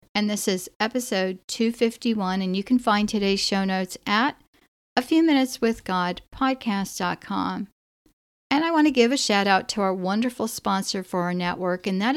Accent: American